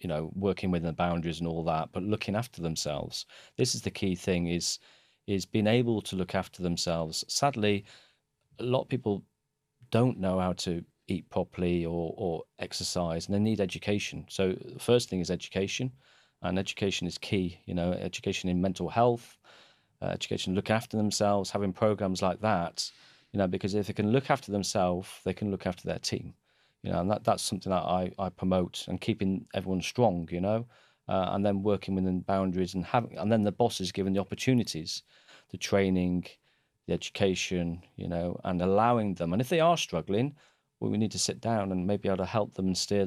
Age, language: 40-59, English